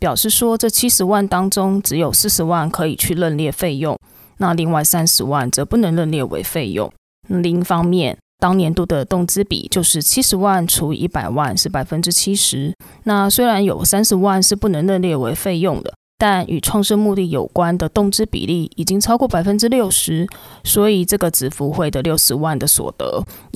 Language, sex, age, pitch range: Chinese, female, 20-39, 165-200 Hz